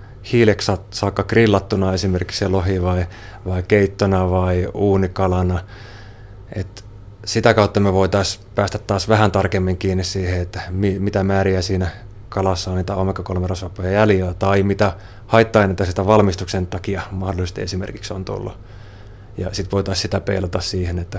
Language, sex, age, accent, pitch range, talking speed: Finnish, male, 30-49, native, 95-100 Hz, 135 wpm